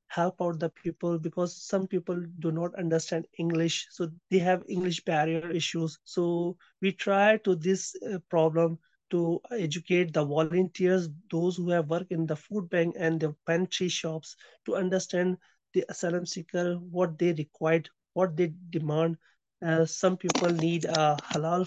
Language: English